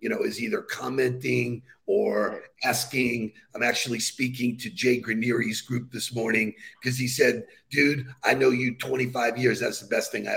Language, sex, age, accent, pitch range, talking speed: English, male, 50-69, American, 125-175 Hz, 175 wpm